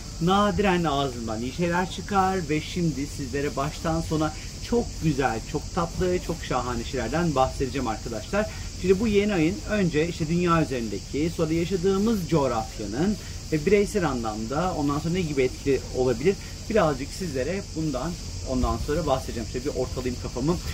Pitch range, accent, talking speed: 140-175 Hz, native, 140 wpm